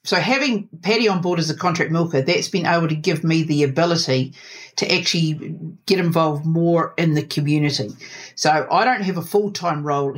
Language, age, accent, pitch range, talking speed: English, 50-69, Australian, 145-180 Hz, 190 wpm